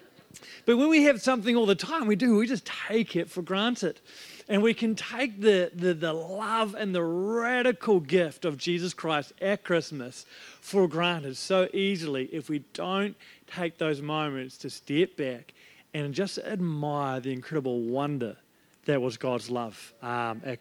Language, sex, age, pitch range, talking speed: English, male, 40-59, 150-205 Hz, 170 wpm